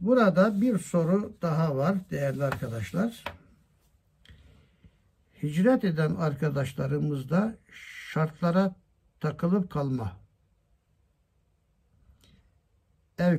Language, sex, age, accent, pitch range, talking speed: Turkish, male, 60-79, native, 130-185 Hz, 65 wpm